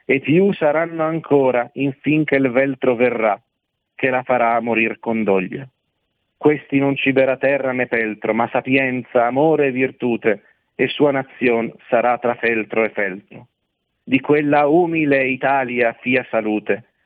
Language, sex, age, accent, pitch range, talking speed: Italian, male, 40-59, native, 125-155 Hz, 140 wpm